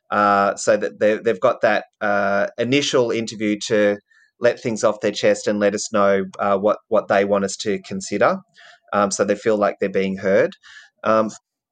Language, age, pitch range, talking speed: English, 30-49, 100-110 Hz, 190 wpm